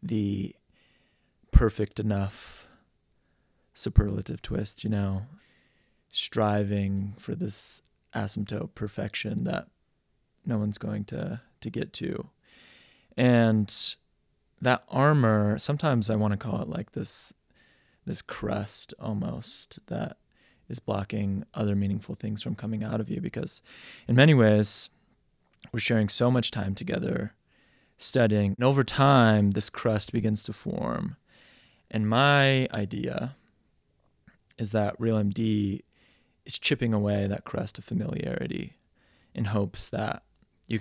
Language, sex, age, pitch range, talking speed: English, male, 20-39, 100-115 Hz, 120 wpm